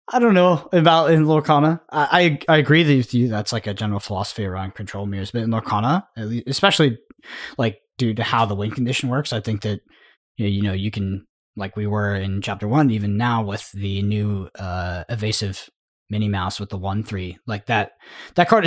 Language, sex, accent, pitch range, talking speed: English, male, American, 100-145 Hz, 200 wpm